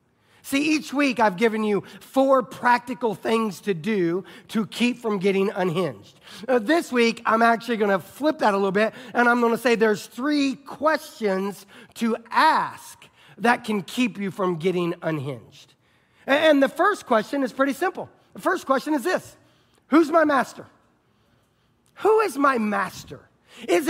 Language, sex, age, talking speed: English, male, 40-59, 160 wpm